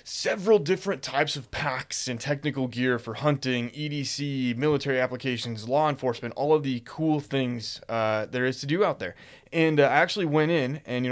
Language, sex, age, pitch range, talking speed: English, male, 20-39, 120-150 Hz, 190 wpm